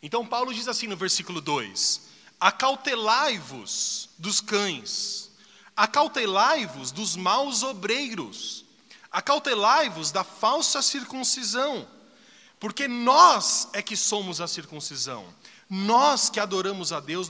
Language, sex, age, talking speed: Portuguese, male, 30-49, 105 wpm